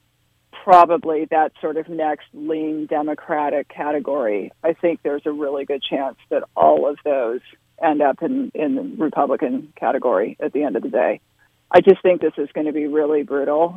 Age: 40-59